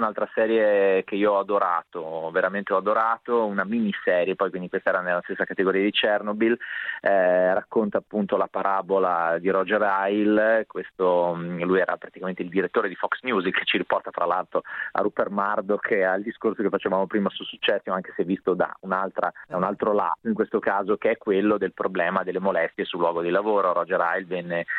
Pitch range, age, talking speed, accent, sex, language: 95-110 Hz, 30-49, 190 wpm, native, male, Italian